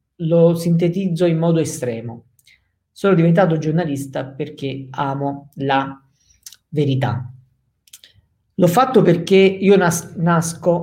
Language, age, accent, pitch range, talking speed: Italian, 40-59, native, 135-180 Hz, 95 wpm